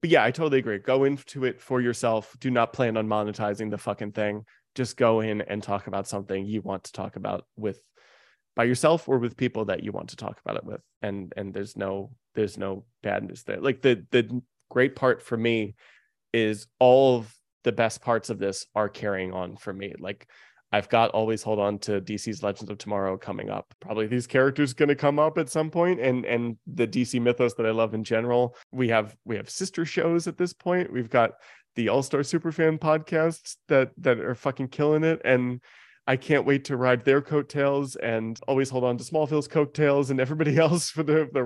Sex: male